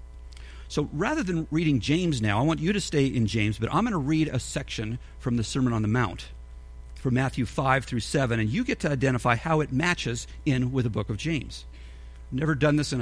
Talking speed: 225 wpm